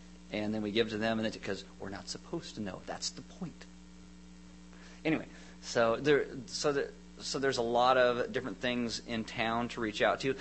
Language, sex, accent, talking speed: English, male, American, 195 wpm